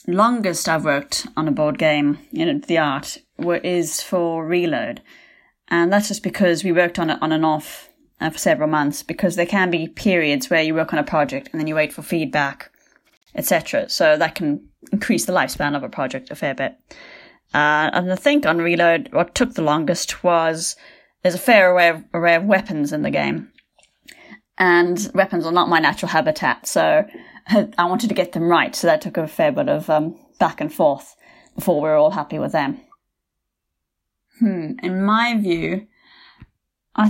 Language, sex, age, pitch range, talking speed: English, female, 20-39, 160-210 Hz, 190 wpm